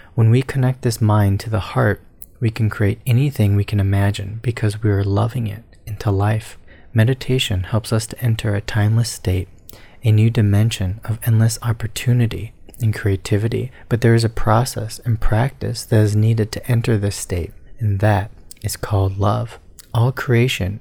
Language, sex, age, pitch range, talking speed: English, male, 30-49, 100-120 Hz, 170 wpm